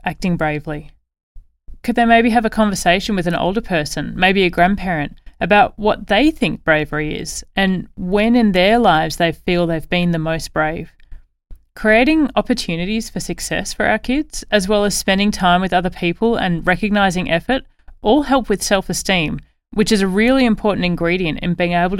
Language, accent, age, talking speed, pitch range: English, Australian, 30-49, 175 wpm, 165-215 Hz